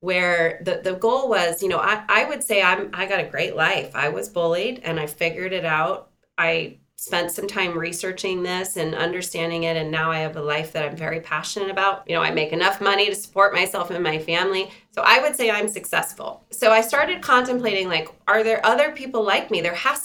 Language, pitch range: English, 170-210 Hz